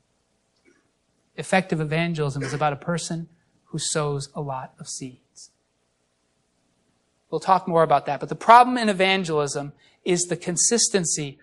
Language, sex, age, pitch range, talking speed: English, male, 30-49, 150-230 Hz, 130 wpm